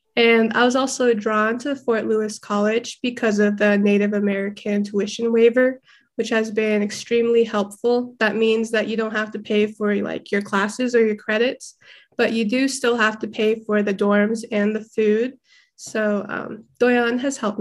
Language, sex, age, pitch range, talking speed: English, female, 20-39, 210-240 Hz, 185 wpm